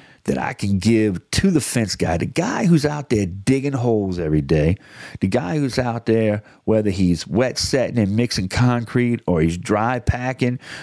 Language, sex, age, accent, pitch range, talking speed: English, male, 40-59, American, 100-130 Hz, 185 wpm